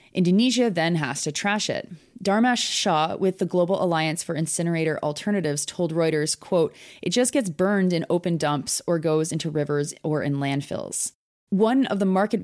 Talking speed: 175 wpm